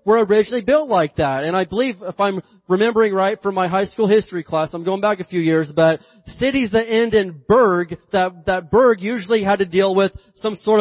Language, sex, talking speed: English, male, 235 wpm